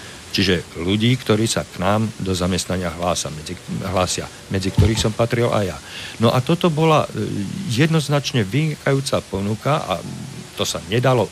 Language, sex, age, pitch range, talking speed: Slovak, male, 50-69, 100-125 Hz, 150 wpm